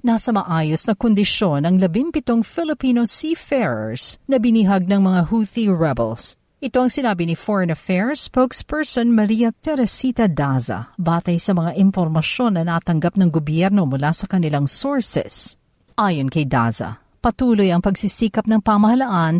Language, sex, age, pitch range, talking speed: Filipino, female, 50-69, 165-235 Hz, 135 wpm